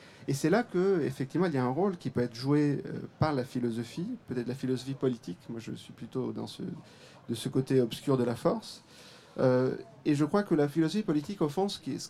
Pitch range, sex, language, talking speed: 125-165 Hz, male, French, 220 wpm